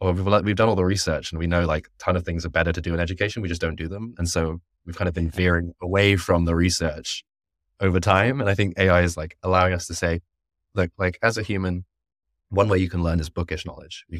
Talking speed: 265 wpm